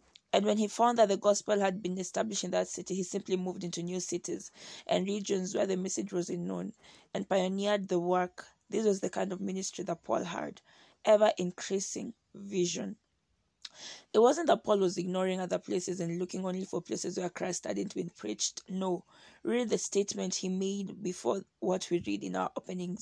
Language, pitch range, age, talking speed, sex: English, 180-200 Hz, 20-39, 195 wpm, female